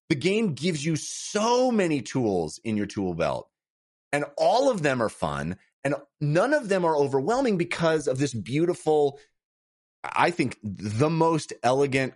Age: 30-49